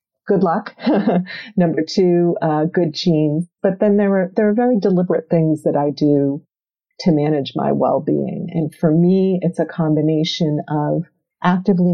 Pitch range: 155-175 Hz